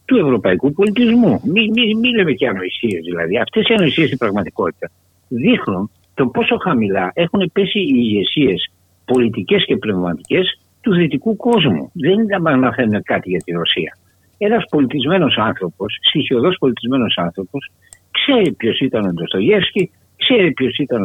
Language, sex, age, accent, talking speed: Greek, male, 60-79, Spanish, 145 wpm